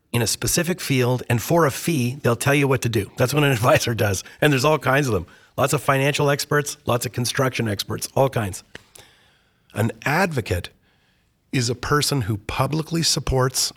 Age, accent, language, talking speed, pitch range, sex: 40-59, American, English, 185 wpm, 105-140 Hz, male